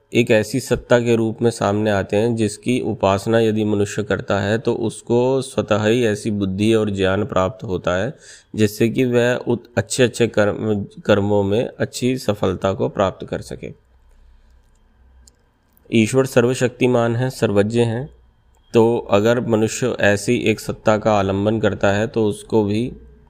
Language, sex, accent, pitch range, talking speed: Hindi, male, native, 100-120 Hz, 145 wpm